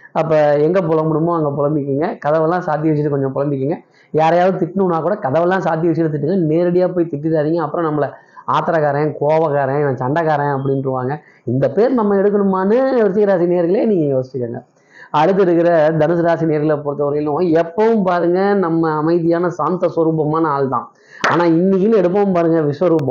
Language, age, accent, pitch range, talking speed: Tamil, 20-39, native, 145-175 Hz, 135 wpm